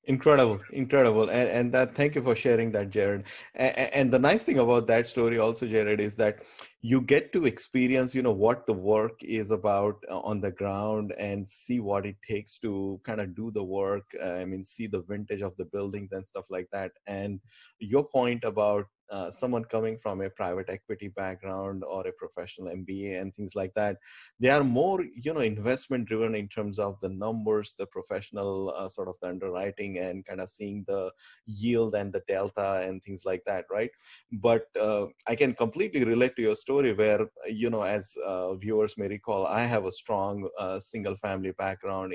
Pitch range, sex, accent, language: 95-115 Hz, male, Indian, English